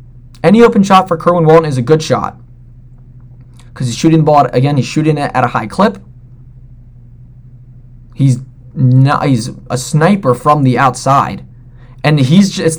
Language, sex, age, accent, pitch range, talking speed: English, male, 20-39, American, 125-165 Hz, 150 wpm